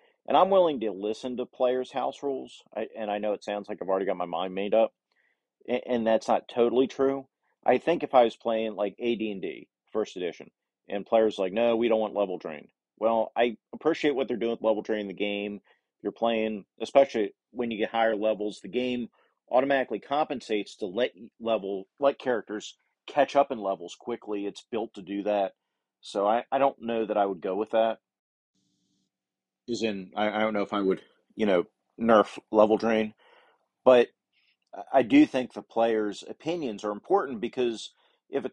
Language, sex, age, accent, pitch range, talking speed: English, male, 40-59, American, 105-125 Hz, 195 wpm